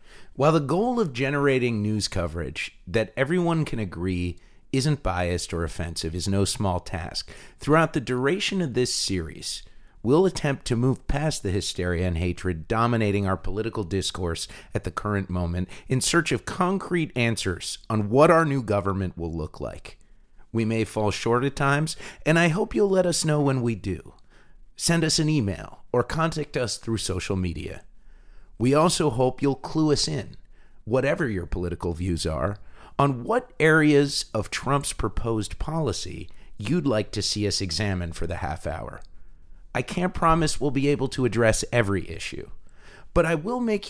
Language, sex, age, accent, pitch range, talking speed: English, male, 40-59, American, 95-145 Hz, 170 wpm